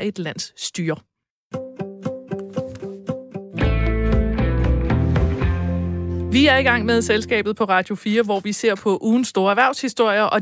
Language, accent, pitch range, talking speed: Danish, native, 180-240 Hz, 115 wpm